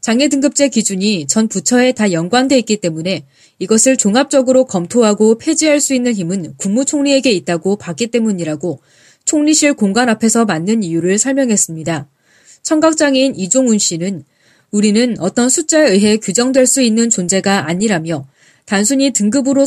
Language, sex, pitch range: Korean, female, 180-265 Hz